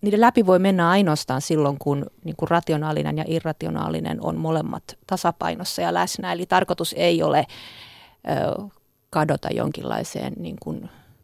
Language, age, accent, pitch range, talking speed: Finnish, 30-49, native, 150-190 Hz, 110 wpm